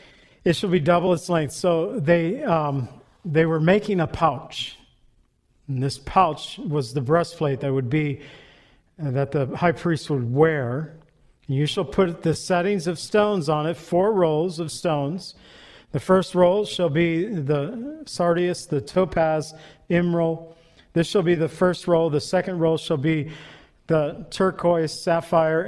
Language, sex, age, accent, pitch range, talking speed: English, male, 50-69, American, 145-175 Hz, 155 wpm